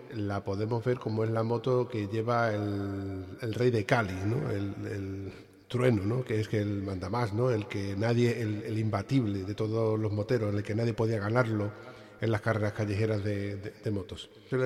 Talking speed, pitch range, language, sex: 205 wpm, 105-125 Hz, Spanish, male